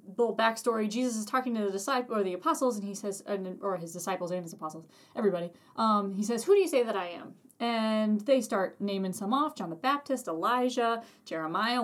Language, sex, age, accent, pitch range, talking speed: English, female, 20-39, American, 190-245 Hz, 215 wpm